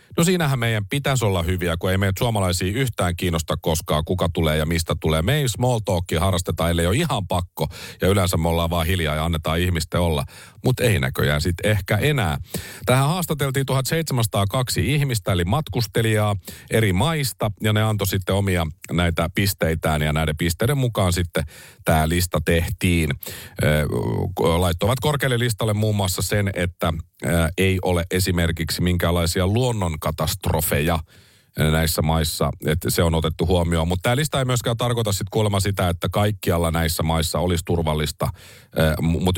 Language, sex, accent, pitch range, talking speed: Finnish, male, native, 85-120 Hz, 155 wpm